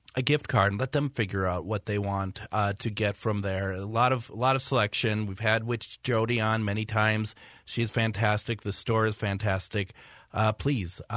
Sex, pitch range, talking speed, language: male, 105-120 Hz, 205 wpm, English